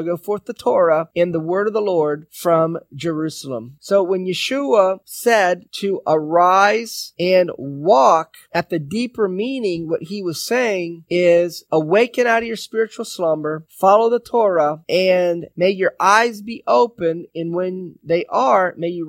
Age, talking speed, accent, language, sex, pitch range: 30-49, 155 wpm, American, English, male, 160-205 Hz